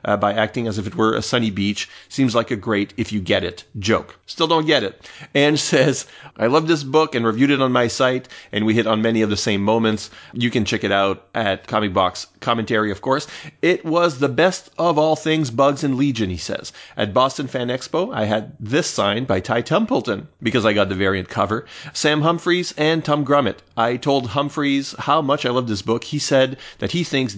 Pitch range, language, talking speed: 110-140 Hz, English, 225 wpm